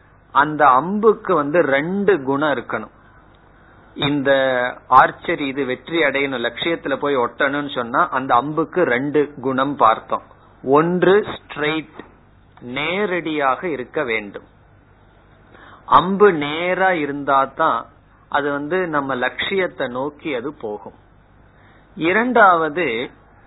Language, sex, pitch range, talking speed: Tamil, male, 130-175 Hz, 95 wpm